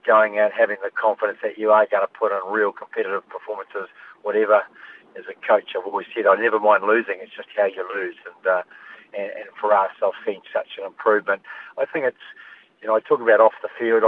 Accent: Australian